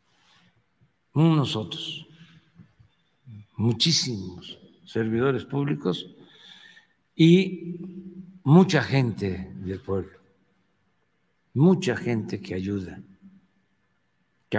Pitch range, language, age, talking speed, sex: 115-160 Hz, Spanish, 60-79, 60 wpm, male